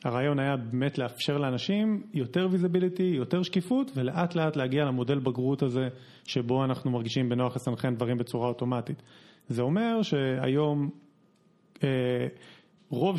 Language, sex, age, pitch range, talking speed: Hebrew, male, 30-49, 130-185 Hz, 125 wpm